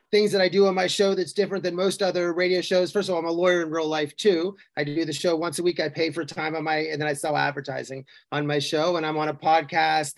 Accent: American